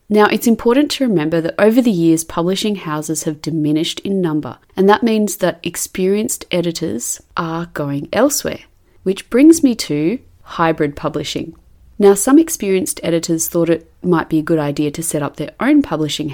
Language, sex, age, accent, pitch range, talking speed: English, female, 30-49, Australian, 155-195 Hz, 175 wpm